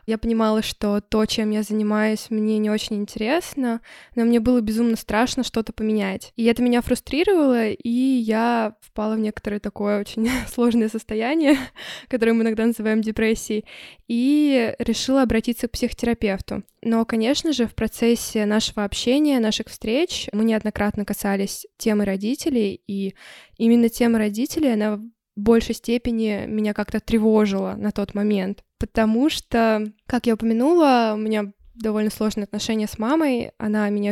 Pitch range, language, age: 215-235 Hz, Russian, 10-29